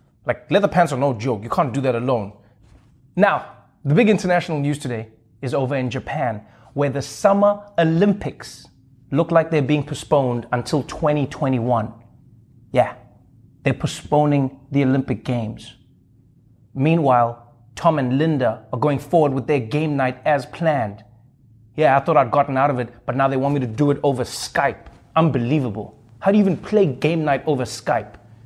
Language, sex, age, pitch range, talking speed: Danish, male, 30-49, 120-160 Hz, 165 wpm